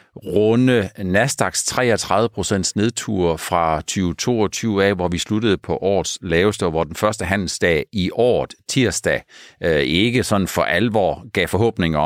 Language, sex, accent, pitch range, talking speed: Danish, male, native, 85-115 Hz, 130 wpm